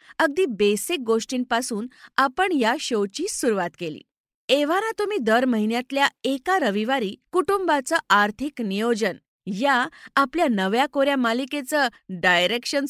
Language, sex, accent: Marathi, female, native